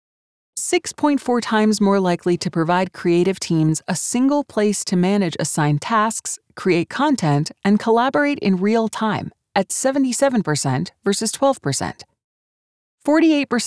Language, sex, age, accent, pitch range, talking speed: English, female, 30-49, American, 165-235 Hz, 105 wpm